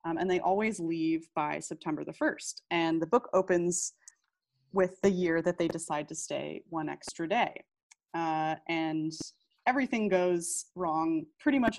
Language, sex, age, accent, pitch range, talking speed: English, female, 20-39, American, 160-190 Hz, 160 wpm